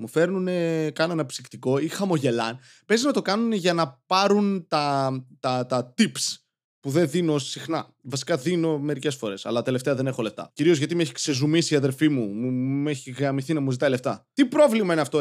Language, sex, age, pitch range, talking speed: Greek, male, 20-39, 140-195 Hz, 195 wpm